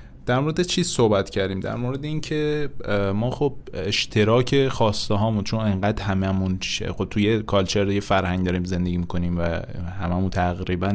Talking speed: 155 wpm